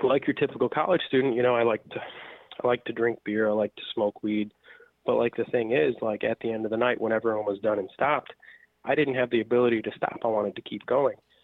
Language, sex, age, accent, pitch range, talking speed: English, male, 30-49, American, 110-130 Hz, 255 wpm